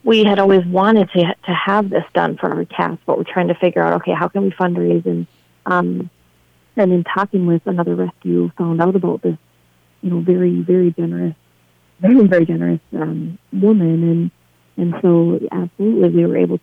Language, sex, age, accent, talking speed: English, female, 30-49, American, 190 wpm